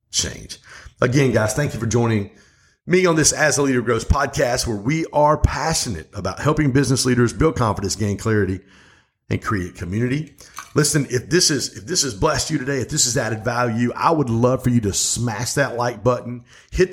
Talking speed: 200 wpm